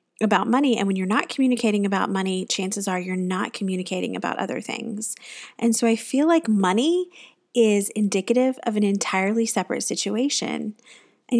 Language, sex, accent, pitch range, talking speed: English, female, American, 185-235 Hz, 165 wpm